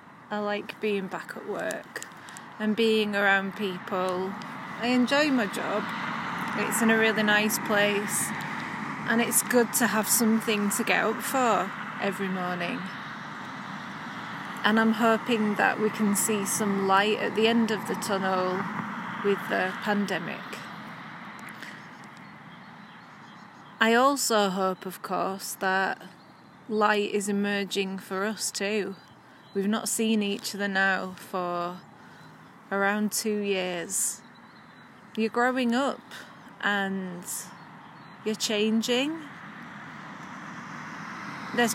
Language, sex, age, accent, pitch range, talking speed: English, female, 30-49, British, 195-225 Hz, 115 wpm